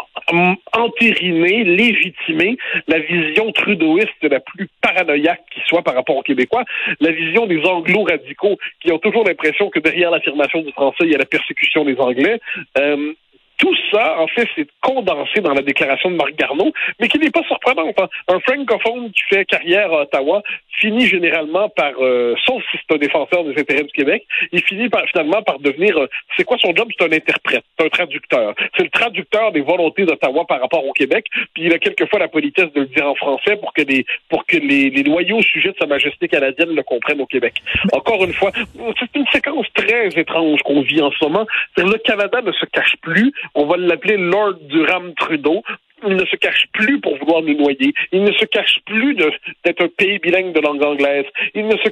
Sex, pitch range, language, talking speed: male, 160-230 Hz, French, 205 wpm